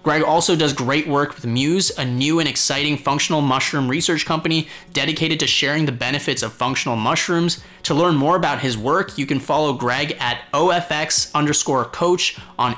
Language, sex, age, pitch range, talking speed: English, male, 30-49, 130-175 Hz, 180 wpm